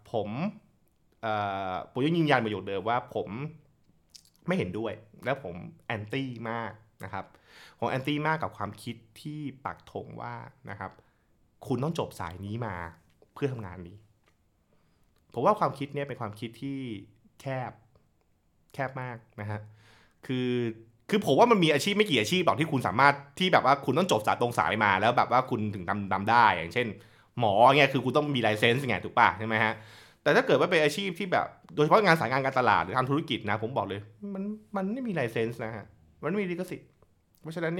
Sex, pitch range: male, 105-140 Hz